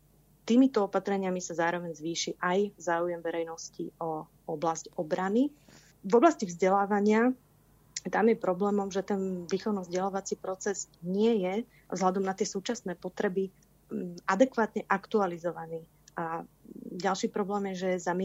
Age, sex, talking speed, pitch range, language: 30-49, female, 120 wpm, 170-200 Hz, Slovak